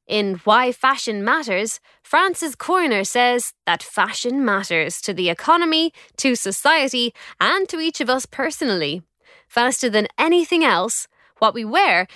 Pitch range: 210-320 Hz